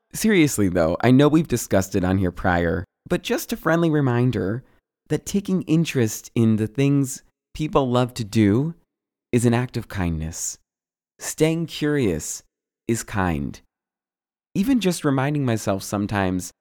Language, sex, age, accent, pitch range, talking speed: English, male, 20-39, American, 105-150 Hz, 140 wpm